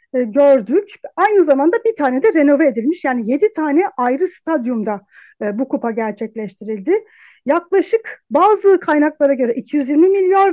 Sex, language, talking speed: female, Turkish, 125 wpm